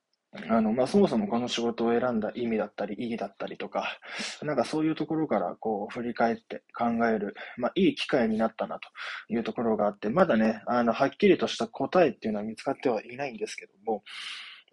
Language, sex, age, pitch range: Japanese, male, 20-39, 110-140 Hz